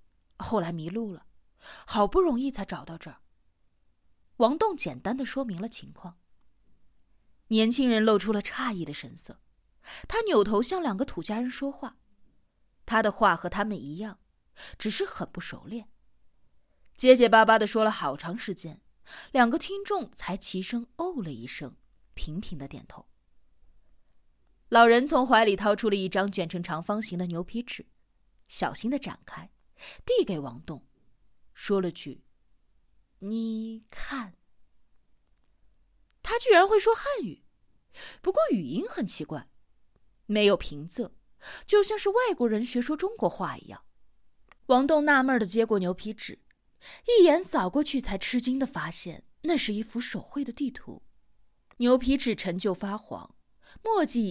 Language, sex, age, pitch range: Chinese, female, 20-39, 170-255 Hz